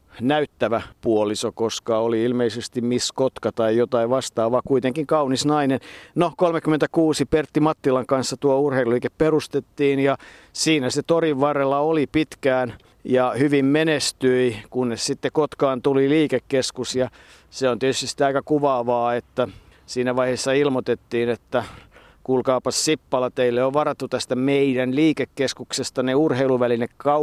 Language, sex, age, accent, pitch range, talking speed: Finnish, male, 50-69, native, 120-145 Hz, 125 wpm